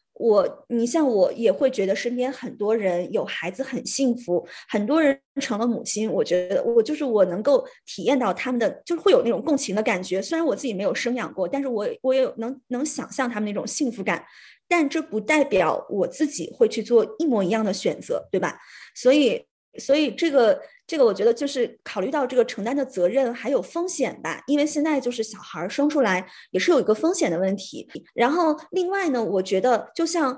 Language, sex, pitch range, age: Chinese, female, 210-290 Hz, 20-39